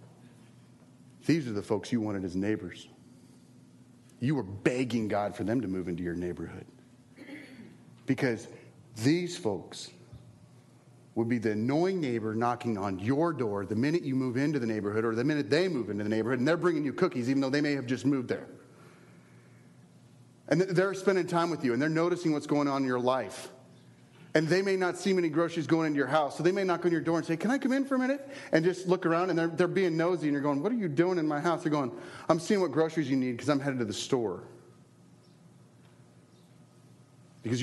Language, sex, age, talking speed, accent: English, male, 40-59, 215 wpm, American